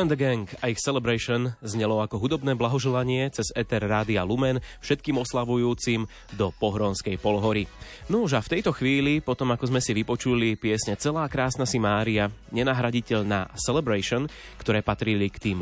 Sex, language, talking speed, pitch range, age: male, Slovak, 155 wpm, 105-135 Hz, 20-39